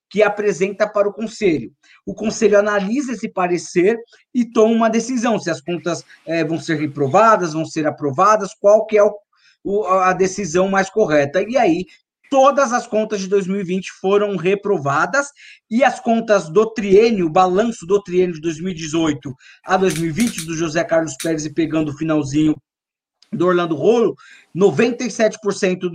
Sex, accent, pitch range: male, Brazilian, 170-220 Hz